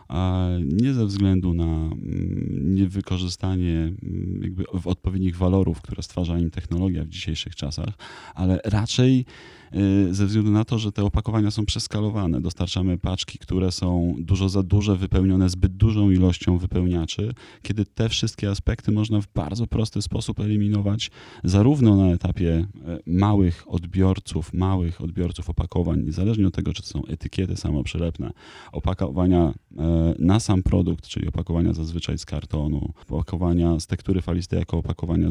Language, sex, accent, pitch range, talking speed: Polish, male, native, 85-105 Hz, 135 wpm